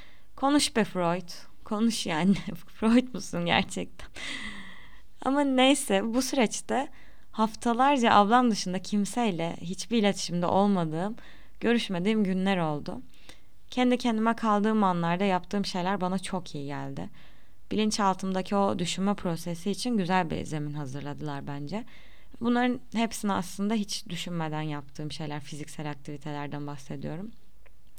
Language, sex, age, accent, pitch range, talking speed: Turkish, female, 20-39, native, 165-210 Hz, 110 wpm